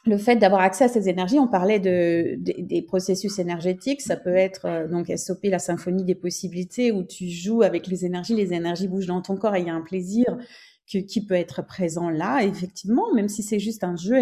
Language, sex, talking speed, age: French, female, 230 wpm, 30-49